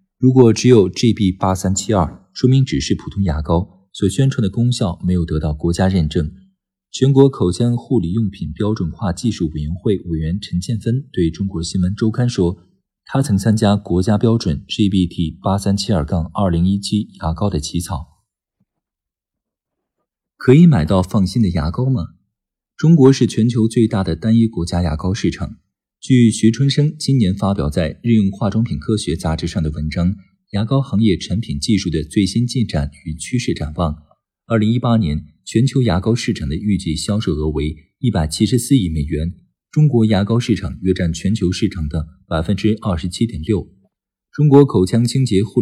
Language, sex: Chinese, male